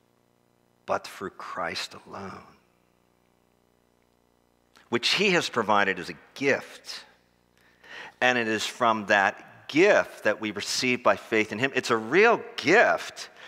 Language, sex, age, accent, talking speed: English, male, 50-69, American, 125 wpm